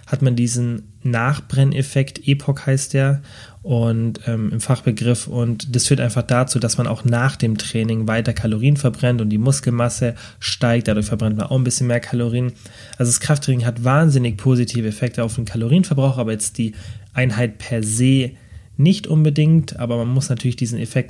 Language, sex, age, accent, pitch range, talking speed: German, male, 30-49, German, 115-130 Hz, 175 wpm